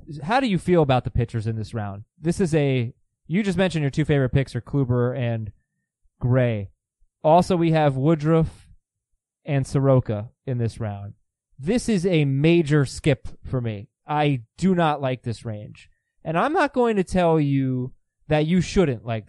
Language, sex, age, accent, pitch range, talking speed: English, male, 20-39, American, 120-165 Hz, 175 wpm